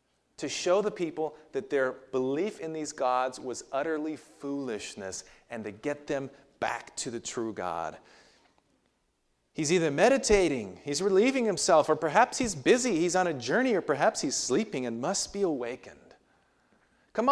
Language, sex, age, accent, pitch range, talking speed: English, male, 40-59, American, 115-180 Hz, 155 wpm